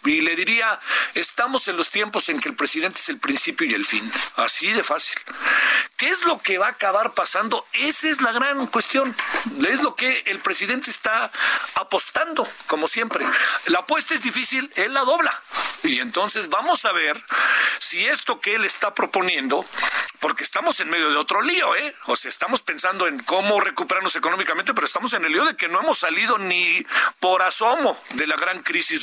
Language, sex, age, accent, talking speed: Spanish, male, 50-69, Mexican, 190 wpm